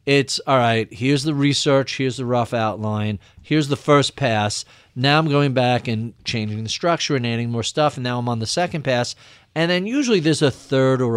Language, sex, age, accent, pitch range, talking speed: English, male, 50-69, American, 110-145 Hz, 215 wpm